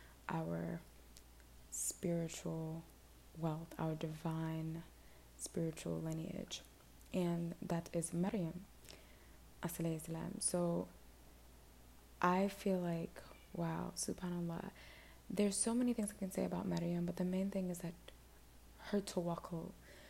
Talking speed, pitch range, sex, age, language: 100 wpm, 160-185 Hz, female, 20-39, English